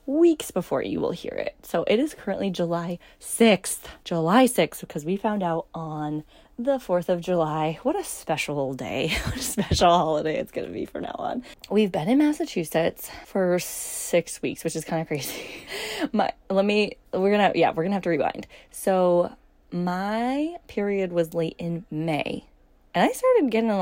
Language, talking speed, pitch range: English, 185 wpm, 165-215 Hz